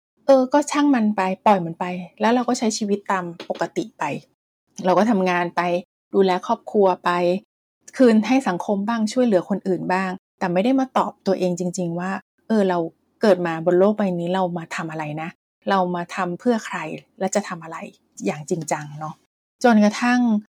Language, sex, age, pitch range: Thai, female, 30-49, 185-235 Hz